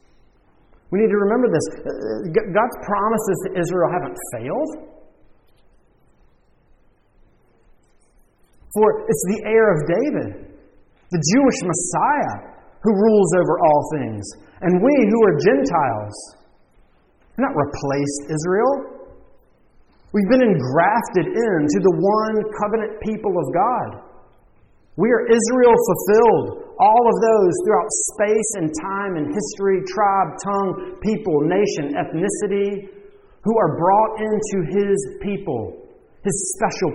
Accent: American